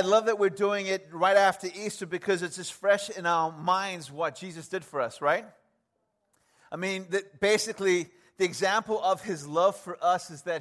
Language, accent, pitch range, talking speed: English, American, 170-205 Hz, 190 wpm